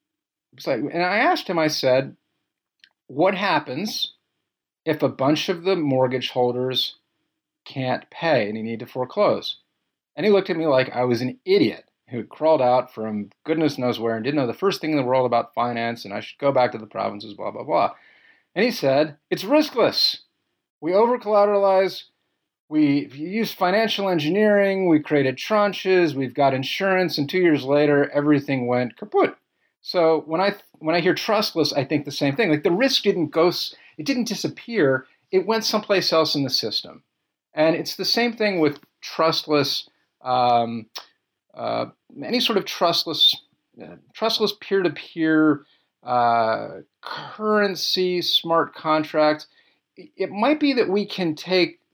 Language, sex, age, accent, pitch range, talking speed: English, male, 40-59, American, 130-190 Hz, 165 wpm